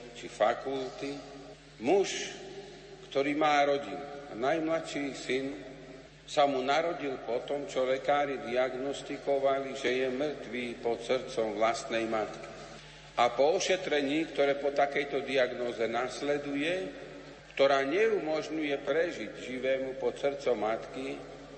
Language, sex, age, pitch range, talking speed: Slovak, male, 50-69, 125-145 Hz, 100 wpm